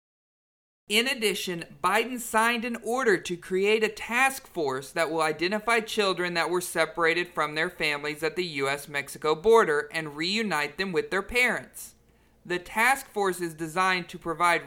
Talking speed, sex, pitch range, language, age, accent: 155 wpm, male, 160-205 Hz, English, 40-59, American